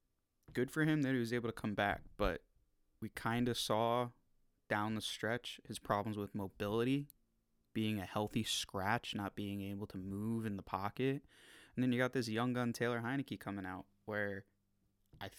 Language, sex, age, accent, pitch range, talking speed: English, male, 20-39, American, 105-130 Hz, 185 wpm